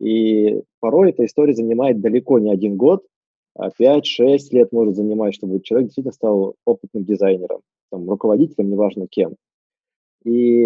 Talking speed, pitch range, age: 135 wpm, 110-140 Hz, 20-39